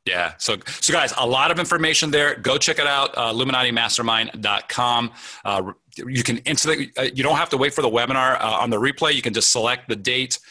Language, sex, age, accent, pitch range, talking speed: English, male, 30-49, American, 110-135 Hz, 210 wpm